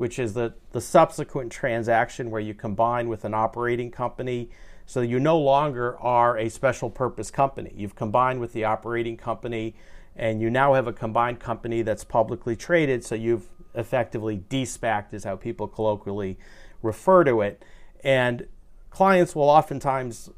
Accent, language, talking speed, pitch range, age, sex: American, English, 160 wpm, 110-130 Hz, 40-59, male